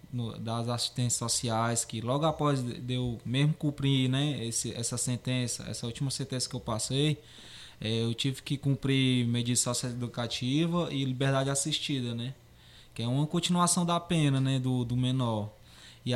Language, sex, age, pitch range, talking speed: Portuguese, male, 20-39, 120-145 Hz, 165 wpm